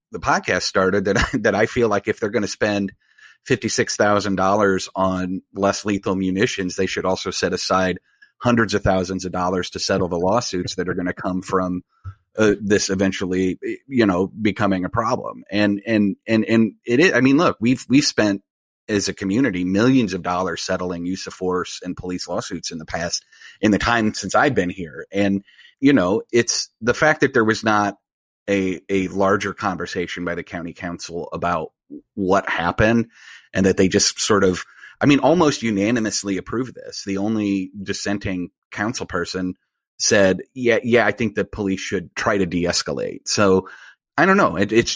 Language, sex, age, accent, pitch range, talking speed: English, male, 30-49, American, 95-115 Hz, 180 wpm